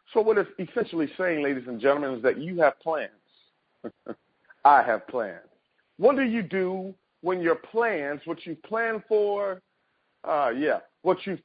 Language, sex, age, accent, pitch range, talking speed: English, male, 50-69, American, 160-245 Hz, 160 wpm